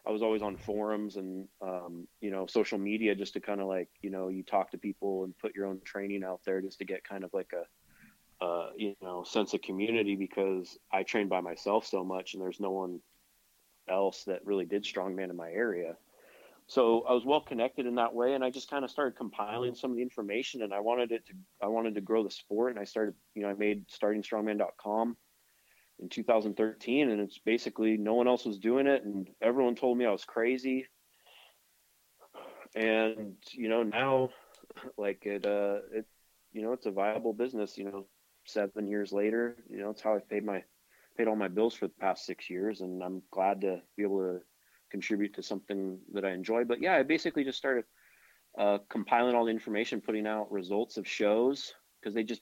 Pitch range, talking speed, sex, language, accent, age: 100-115 Hz, 210 wpm, male, English, American, 30-49